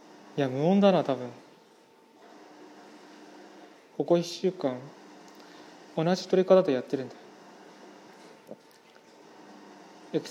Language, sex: Japanese, male